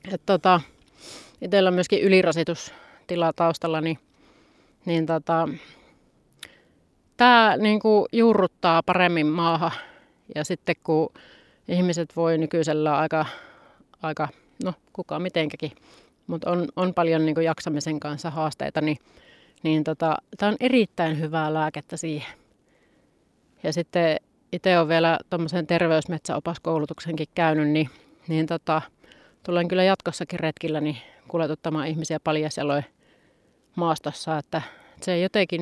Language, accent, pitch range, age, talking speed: Finnish, native, 155-180 Hz, 30-49, 110 wpm